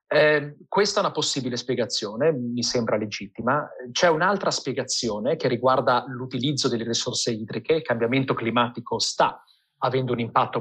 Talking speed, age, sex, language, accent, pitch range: 140 wpm, 30-49, male, Italian, native, 120-155 Hz